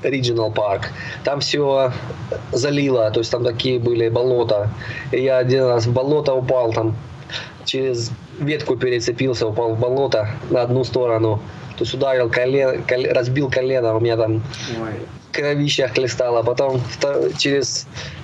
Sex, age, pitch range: male, 20-39, 115-140 Hz